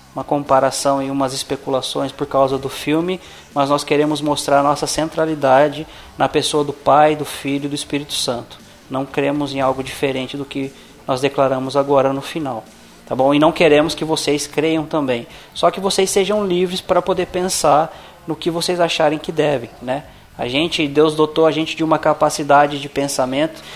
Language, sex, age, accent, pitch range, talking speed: Portuguese, male, 20-39, Brazilian, 140-170 Hz, 180 wpm